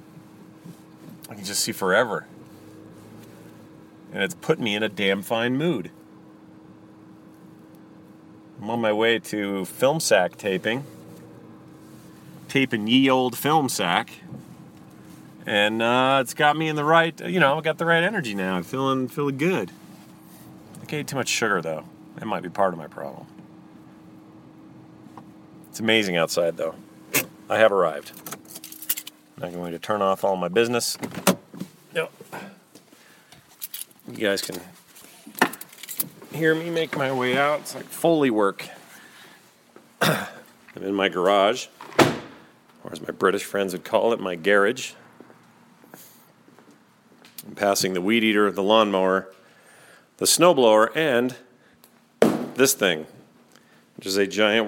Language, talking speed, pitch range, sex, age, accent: English, 130 wpm, 100-135 Hz, male, 40-59, American